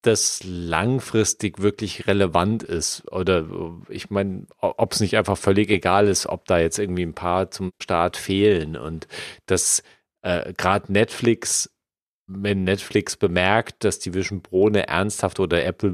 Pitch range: 90-110 Hz